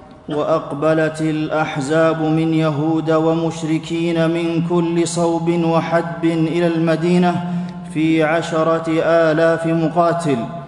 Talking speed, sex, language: 85 wpm, male, Arabic